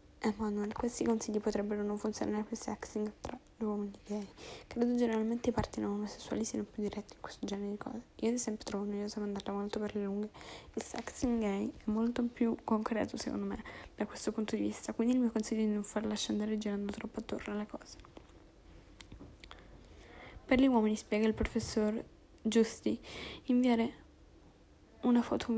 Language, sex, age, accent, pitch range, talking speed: Italian, female, 10-29, native, 210-235 Hz, 185 wpm